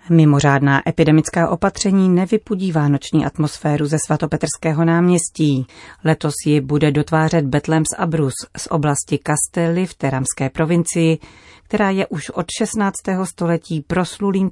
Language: Czech